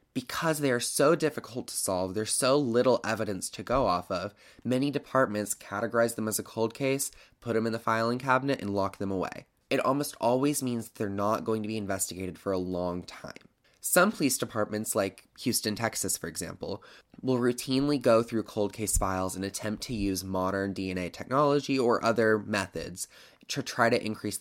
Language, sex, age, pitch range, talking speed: English, male, 20-39, 100-125 Hz, 185 wpm